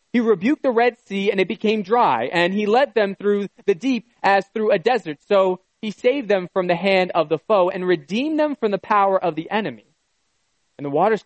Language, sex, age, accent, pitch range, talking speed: English, male, 20-39, American, 150-205 Hz, 225 wpm